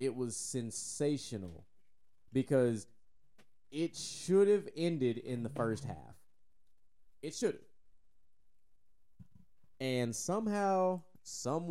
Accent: American